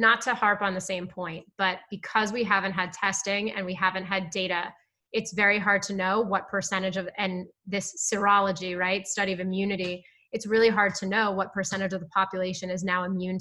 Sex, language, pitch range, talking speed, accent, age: female, English, 190-225 Hz, 205 wpm, American, 20-39